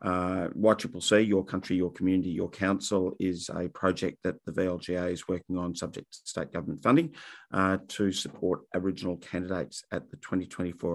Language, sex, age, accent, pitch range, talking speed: English, male, 50-69, Australian, 95-105 Hz, 165 wpm